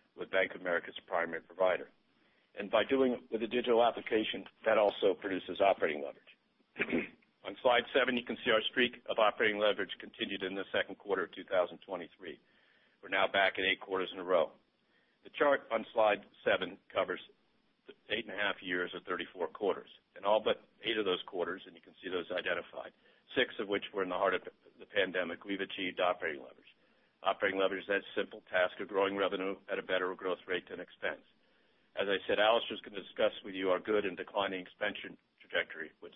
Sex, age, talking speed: male, 60-79, 200 wpm